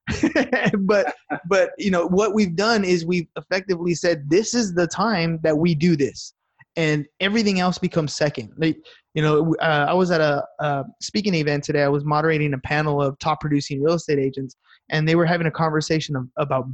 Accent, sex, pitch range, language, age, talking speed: American, male, 150-185 Hz, English, 20-39, 195 wpm